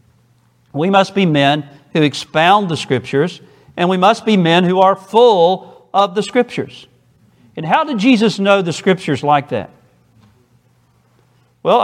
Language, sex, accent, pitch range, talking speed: English, male, American, 130-195 Hz, 145 wpm